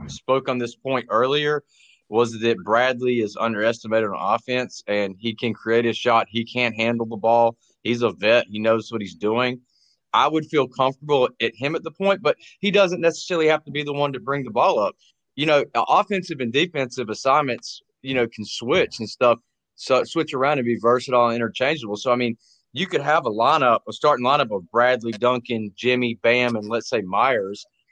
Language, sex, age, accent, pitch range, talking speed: English, male, 30-49, American, 115-150 Hz, 200 wpm